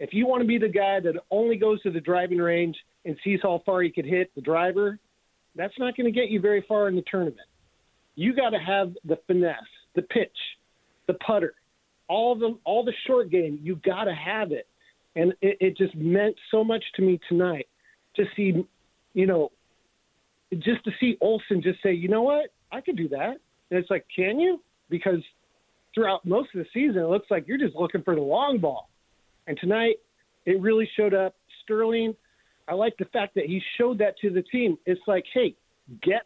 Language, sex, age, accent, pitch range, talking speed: English, male, 40-59, American, 180-225 Hz, 205 wpm